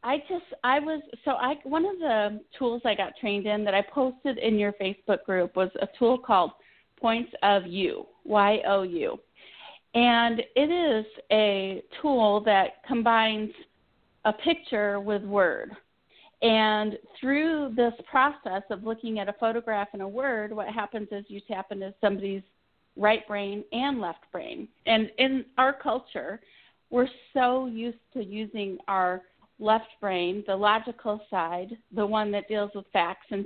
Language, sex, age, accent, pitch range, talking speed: English, female, 30-49, American, 200-250 Hz, 160 wpm